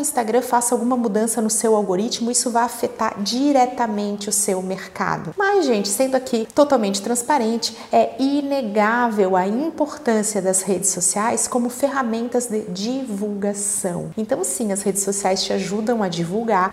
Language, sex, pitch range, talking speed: Portuguese, female, 205-250 Hz, 145 wpm